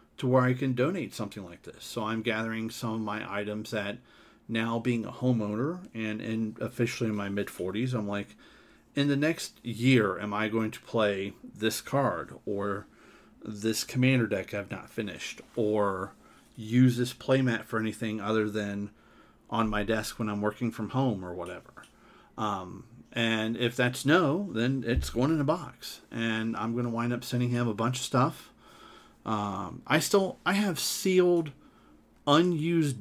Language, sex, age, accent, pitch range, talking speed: English, male, 40-59, American, 110-135 Hz, 175 wpm